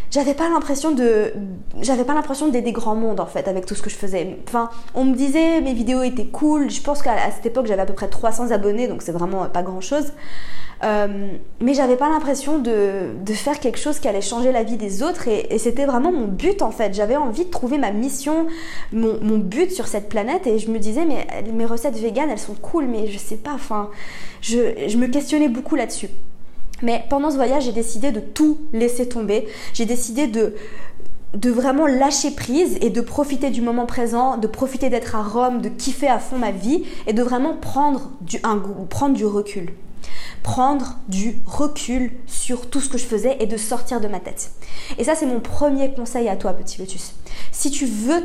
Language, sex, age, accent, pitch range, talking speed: French, female, 20-39, French, 215-280 Hz, 215 wpm